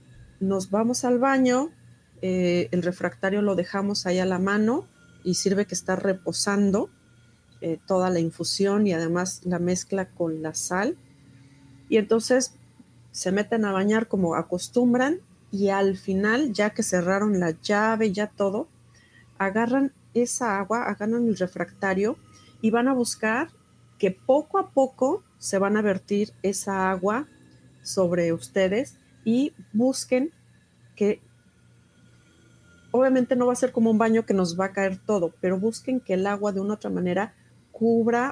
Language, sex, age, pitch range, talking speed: Spanish, female, 40-59, 175-220 Hz, 150 wpm